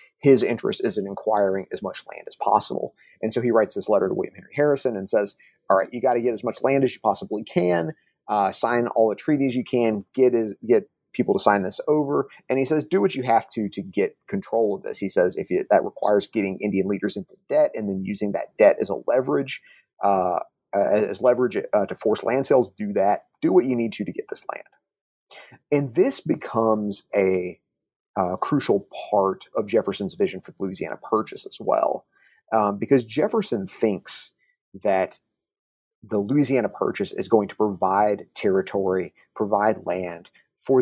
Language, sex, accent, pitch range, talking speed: English, male, American, 100-130 Hz, 195 wpm